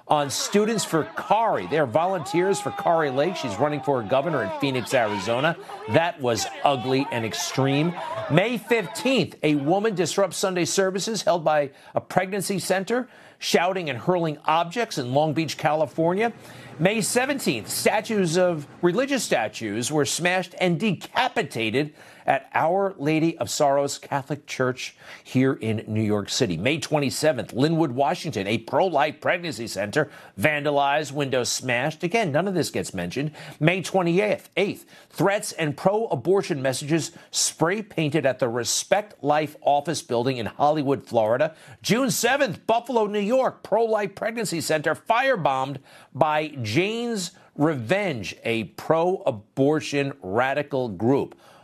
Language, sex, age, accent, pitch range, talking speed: English, male, 50-69, American, 135-190 Hz, 130 wpm